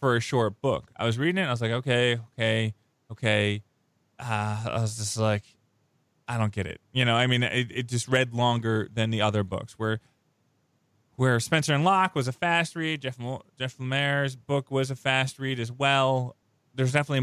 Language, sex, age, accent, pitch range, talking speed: English, male, 20-39, American, 110-135 Hz, 200 wpm